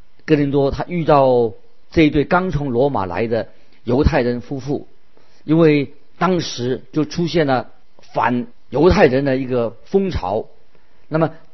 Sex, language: male, Chinese